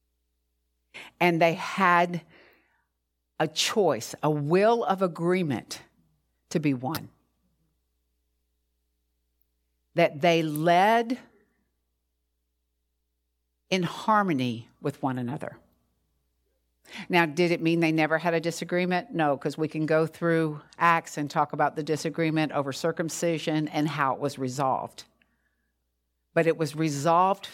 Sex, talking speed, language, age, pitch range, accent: female, 115 wpm, English, 50-69, 135-175 Hz, American